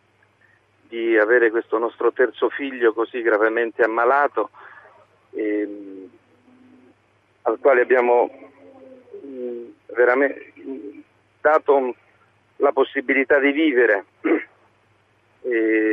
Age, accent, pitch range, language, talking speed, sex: 50-69, native, 110-160 Hz, Italian, 85 wpm, male